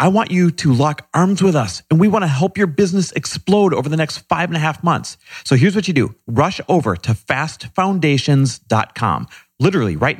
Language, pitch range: English, 105-170 Hz